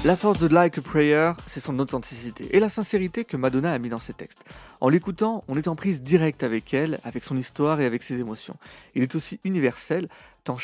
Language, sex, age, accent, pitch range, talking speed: French, male, 30-49, French, 130-185 Hz, 225 wpm